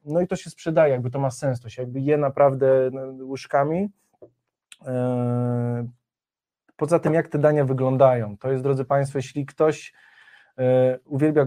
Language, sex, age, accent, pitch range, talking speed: Polish, male, 20-39, native, 125-145 Hz, 145 wpm